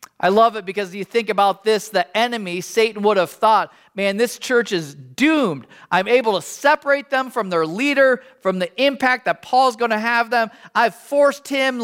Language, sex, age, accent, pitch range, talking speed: English, male, 40-59, American, 200-265 Hz, 195 wpm